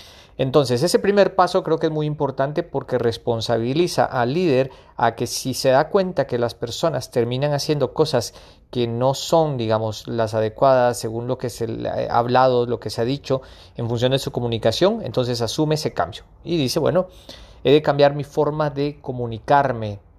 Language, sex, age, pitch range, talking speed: Spanish, male, 40-59, 120-155 Hz, 180 wpm